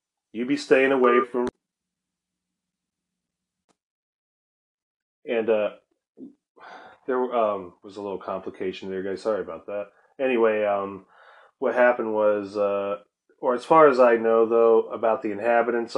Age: 30-49